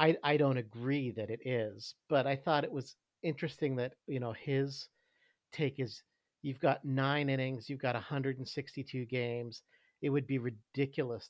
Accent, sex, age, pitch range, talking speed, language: American, male, 50-69, 120-145 Hz, 165 wpm, English